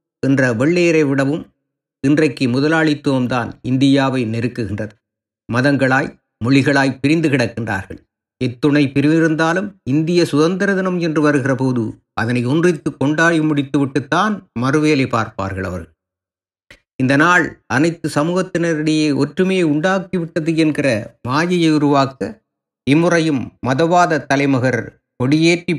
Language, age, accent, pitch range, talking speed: Tamil, 50-69, native, 120-155 Hz, 90 wpm